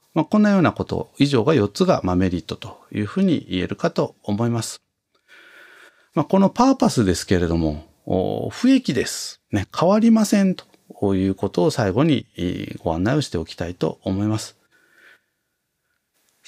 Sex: male